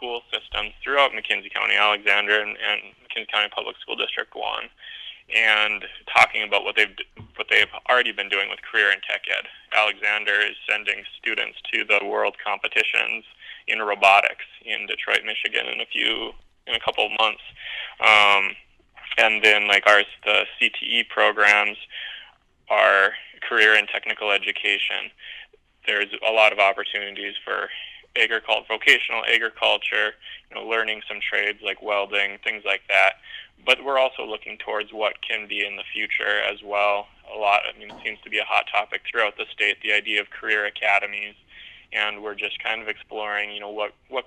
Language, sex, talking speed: English, male, 165 wpm